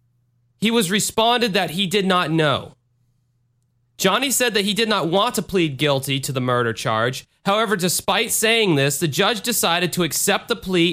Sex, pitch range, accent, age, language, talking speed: male, 140-200 Hz, American, 30-49, English, 180 wpm